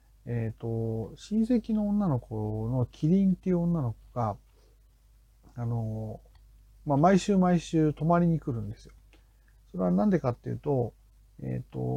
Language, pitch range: Japanese, 115-175 Hz